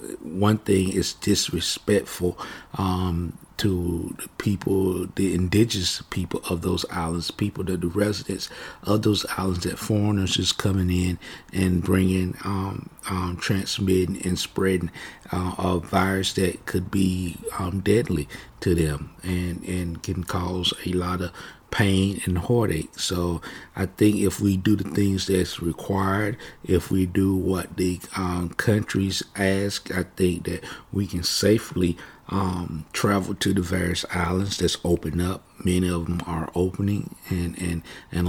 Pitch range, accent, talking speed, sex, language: 90-100 Hz, American, 145 wpm, male, English